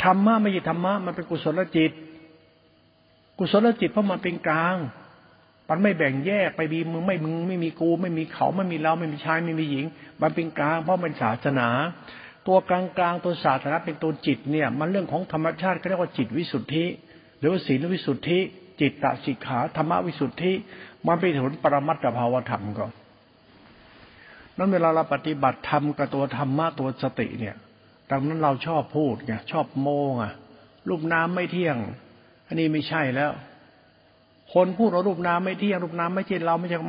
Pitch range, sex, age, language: 135-180 Hz, male, 60-79, Thai